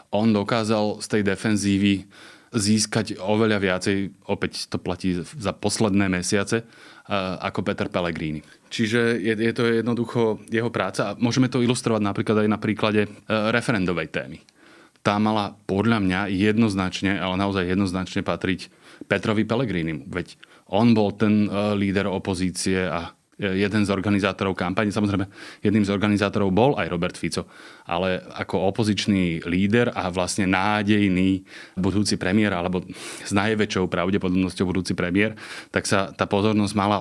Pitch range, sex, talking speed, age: 95-110 Hz, male, 135 wpm, 20-39